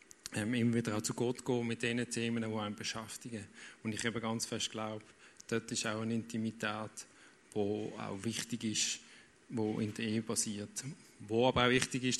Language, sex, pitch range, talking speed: German, male, 110-125 Hz, 180 wpm